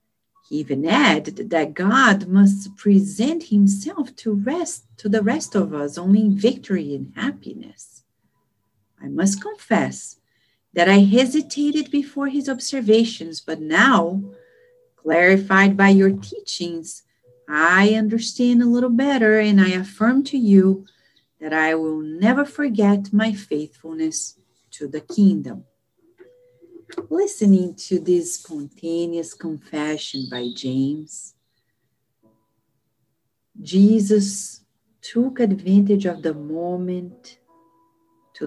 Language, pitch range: English, 155-230 Hz